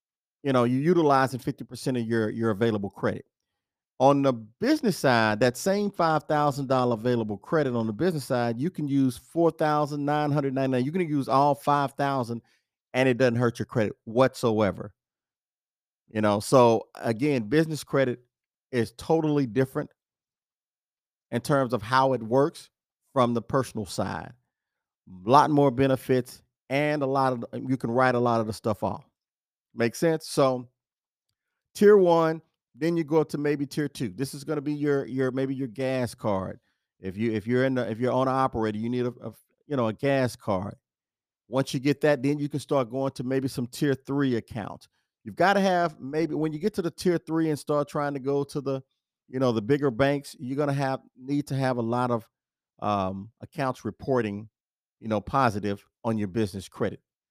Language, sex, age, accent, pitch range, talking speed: English, male, 40-59, American, 115-145 Hz, 185 wpm